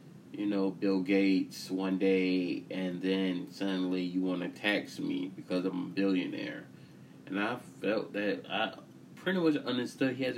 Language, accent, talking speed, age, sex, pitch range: English, American, 160 wpm, 20-39, male, 90-105 Hz